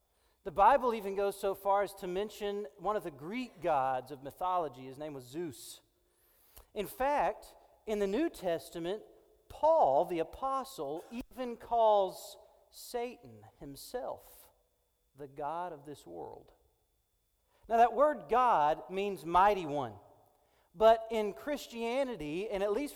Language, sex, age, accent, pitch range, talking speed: English, male, 40-59, American, 165-245 Hz, 135 wpm